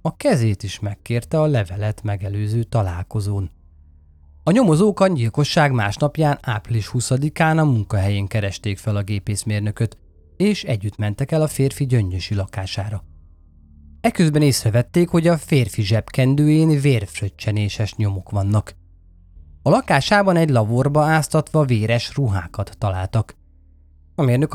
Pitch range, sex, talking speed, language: 95-150 Hz, male, 115 wpm, Hungarian